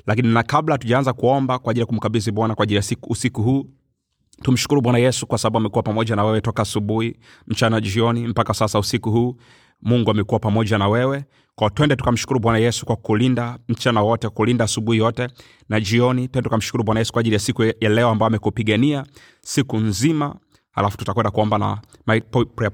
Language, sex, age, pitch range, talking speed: Swahili, male, 30-49, 115-135 Hz, 180 wpm